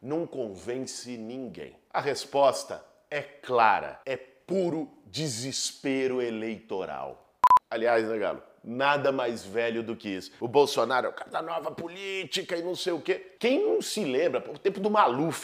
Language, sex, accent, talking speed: Portuguese, male, Brazilian, 160 wpm